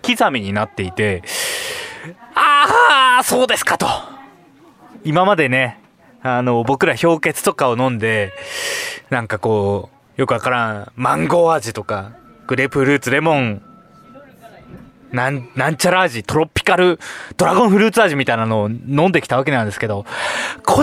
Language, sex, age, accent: Japanese, male, 20-39, native